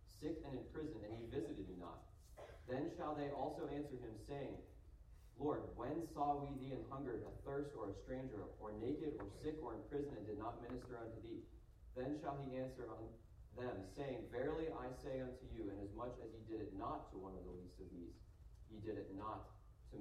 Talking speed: 220 wpm